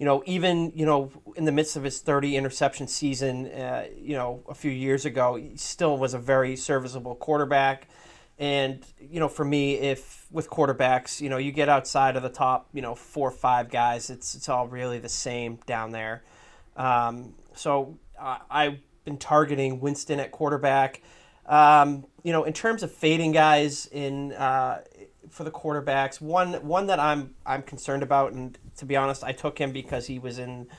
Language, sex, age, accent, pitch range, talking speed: English, male, 30-49, American, 125-145 Hz, 190 wpm